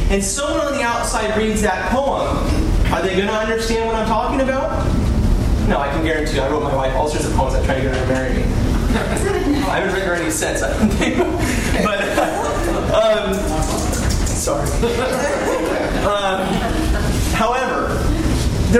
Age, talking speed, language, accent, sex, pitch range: 30-49, 155 wpm, English, American, male, 205-270 Hz